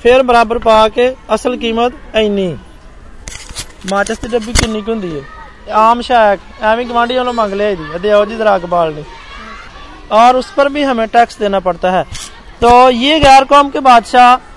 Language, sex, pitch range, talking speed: Hindi, male, 215-255 Hz, 110 wpm